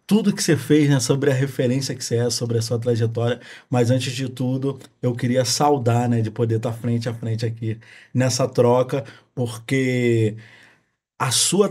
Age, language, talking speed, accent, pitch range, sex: 20-39, Portuguese, 180 wpm, Brazilian, 120-145 Hz, male